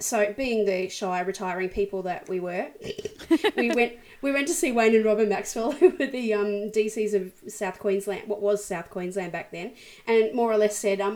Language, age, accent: English, 20-39, Australian